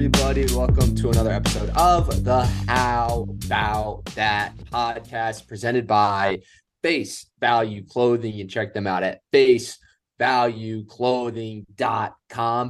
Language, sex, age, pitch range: English, male, 20-39, 100-120 Hz